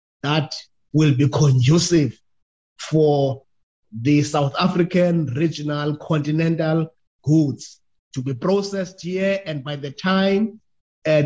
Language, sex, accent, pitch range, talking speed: English, male, South African, 130-180 Hz, 105 wpm